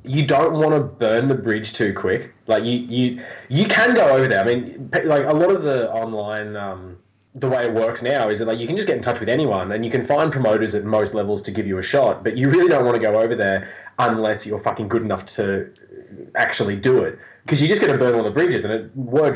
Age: 20-39